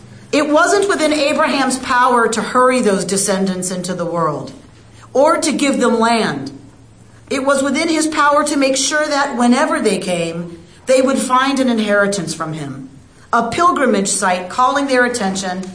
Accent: American